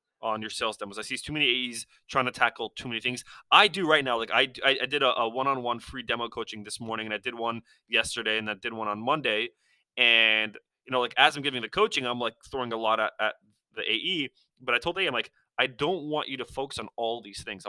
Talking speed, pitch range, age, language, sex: 260 wpm, 115-145 Hz, 20-39, English, male